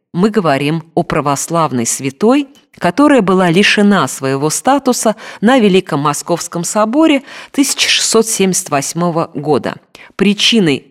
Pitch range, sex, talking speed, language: 145-215 Hz, female, 95 wpm, Russian